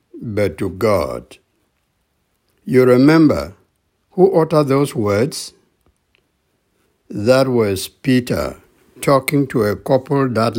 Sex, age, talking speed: male, 60-79, 95 wpm